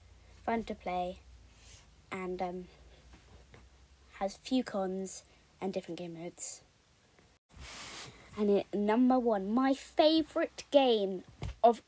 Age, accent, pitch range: 20-39, British, 185-245 Hz